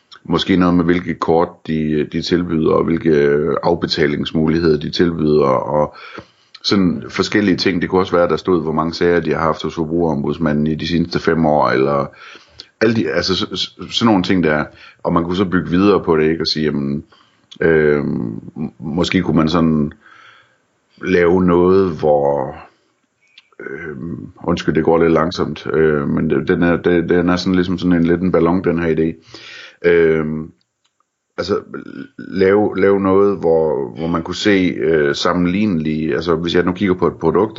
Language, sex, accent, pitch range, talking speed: Danish, male, native, 80-90 Hz, 170 wpm